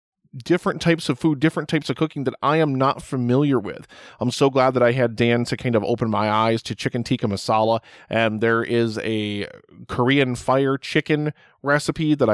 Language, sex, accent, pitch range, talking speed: English, male, American, 120-150 Hz, 195 wpm